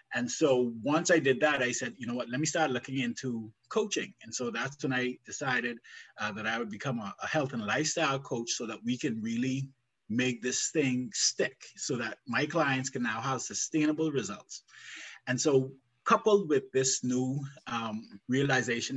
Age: 20-39